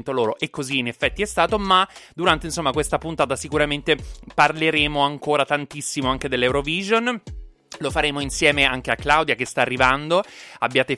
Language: Italian